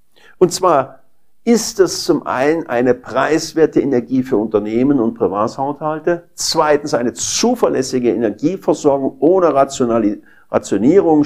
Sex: male